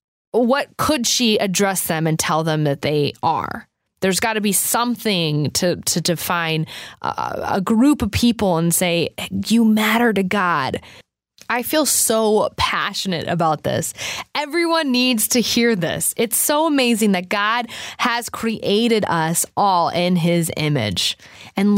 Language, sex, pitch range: English, female, 170-220 Hz